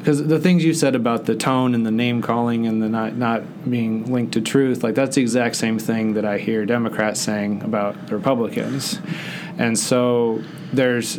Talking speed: 200 wpm